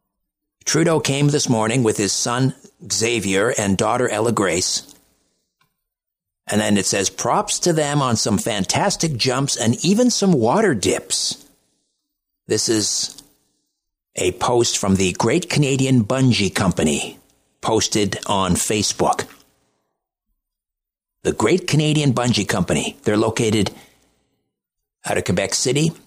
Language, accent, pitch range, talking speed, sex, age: English, American, 100-145 Hz, 120 wpm, male, 60-79